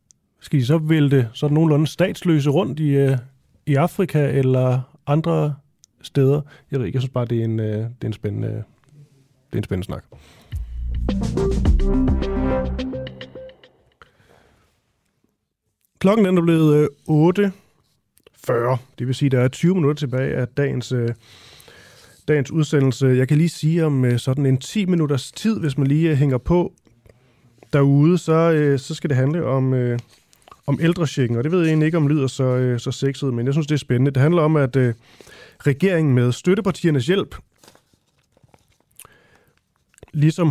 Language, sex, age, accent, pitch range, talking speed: Danish, male, 30-49, native, 125-155 Hz, 150 wpm